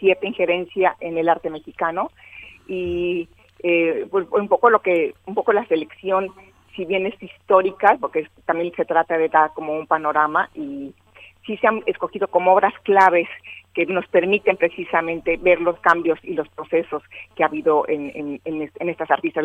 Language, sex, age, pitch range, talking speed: Spanish, female, 40-59, 155-180 Hz, 170 wpm